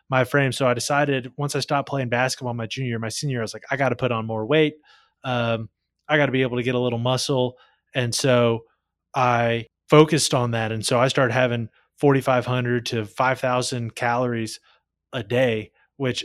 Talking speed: 195 wpm